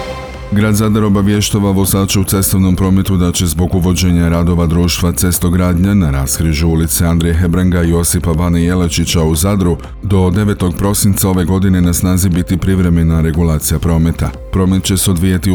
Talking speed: 160 wpm